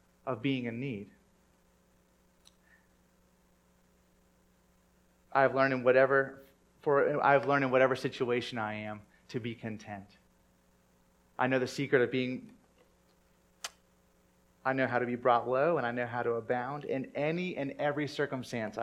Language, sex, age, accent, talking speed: English, male, 30-49, American, 125 wpm